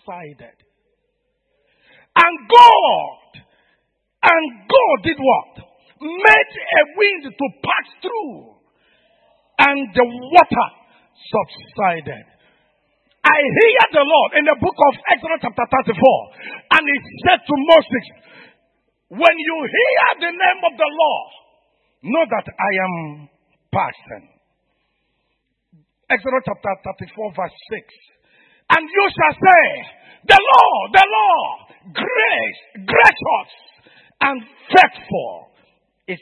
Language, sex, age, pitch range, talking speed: English, male, 50-69, 230-340 Hz, 105 wpm